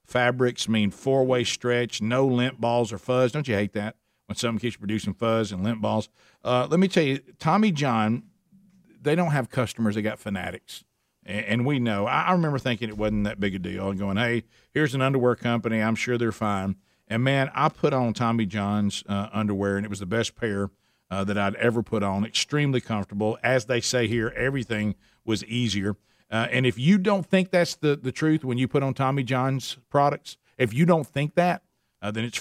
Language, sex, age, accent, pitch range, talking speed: English, male, 50-69, American, 110-135 Hz, 210 wpm